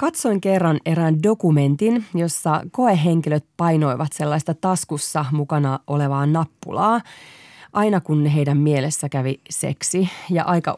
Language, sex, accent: Finnish, female, native